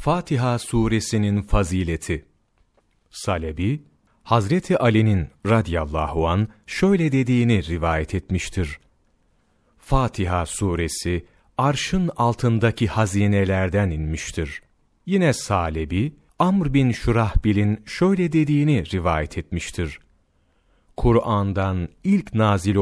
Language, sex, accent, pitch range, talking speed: Turkish, male, native, 85-125 Hz, 80 wpm